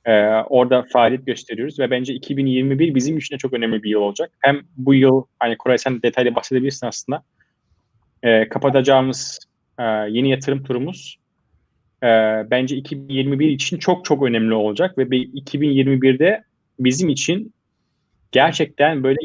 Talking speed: 140 wpm